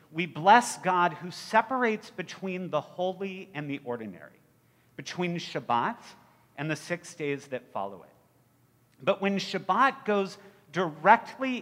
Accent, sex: American, male